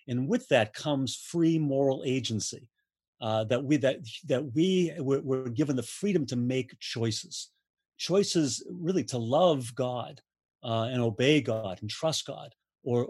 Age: 40-59